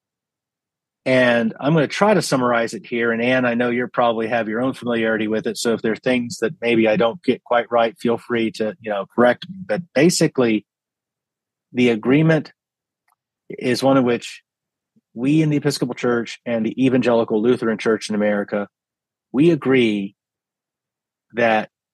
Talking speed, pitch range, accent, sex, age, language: 170 wpm, 115-135 Hz, American, male, 30-49, English